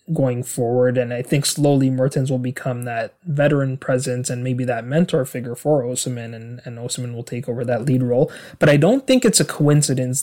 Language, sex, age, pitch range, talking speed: English, male, 20-39, 125-150 Hz, 205 wpm